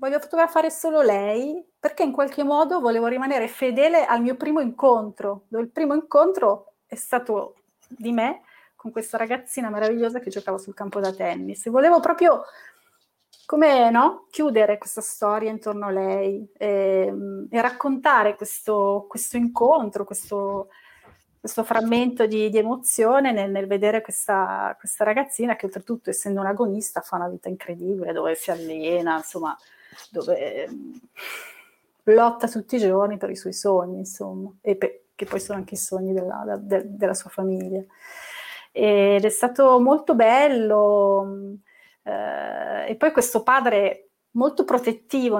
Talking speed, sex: 145 wpm, female